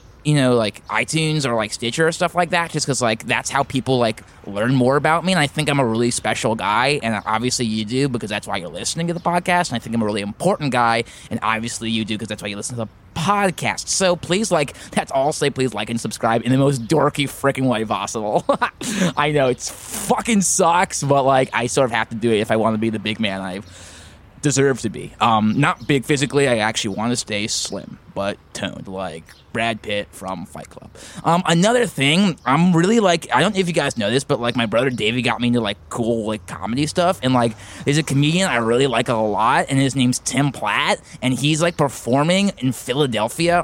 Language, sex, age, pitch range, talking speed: English, male, 20-39, 110-150 Hz, 235 wpm